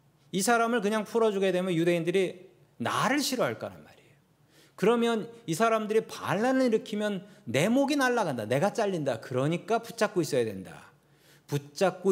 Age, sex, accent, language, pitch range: 40-59, male, native, Korean, 145-190 Hz